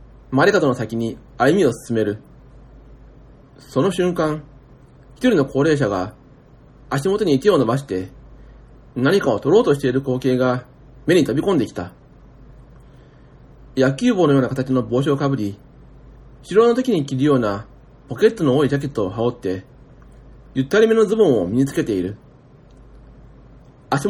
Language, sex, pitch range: Japanese, male, 125-175 Hz